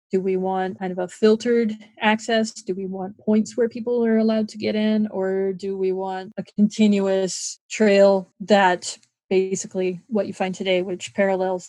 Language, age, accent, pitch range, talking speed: English, 30-49, American, 185-210 Hz, 175 wpm